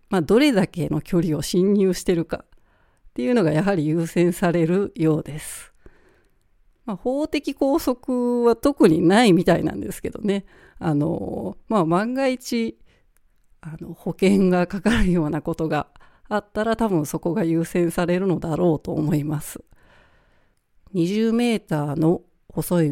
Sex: female